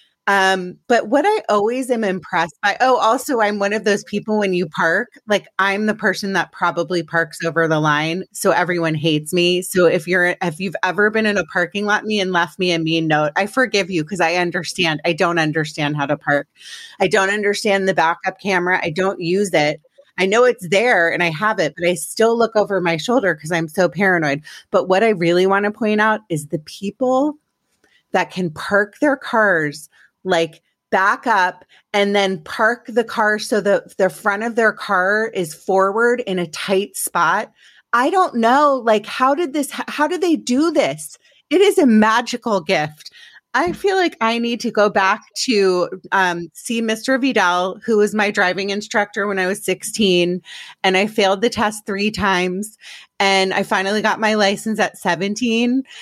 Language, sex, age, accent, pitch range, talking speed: English, female, 30-49, American, 170-215 Hz, 200 wpm